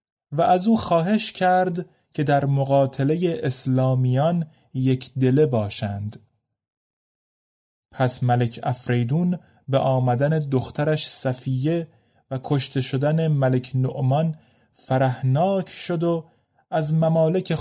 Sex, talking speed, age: male, 100 wpm, 30-49